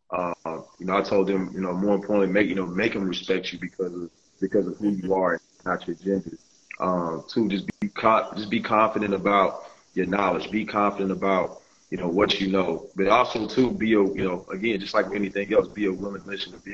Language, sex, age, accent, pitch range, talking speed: English, male, 30-49, American, 95-110 Hz, 230 wpm